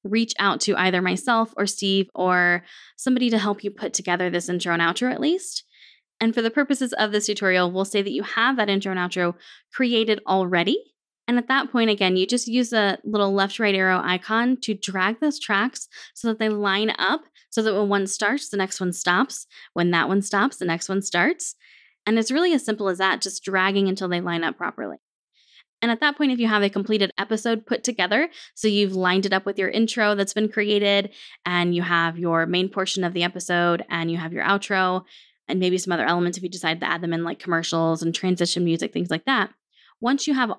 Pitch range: 180-225 Hz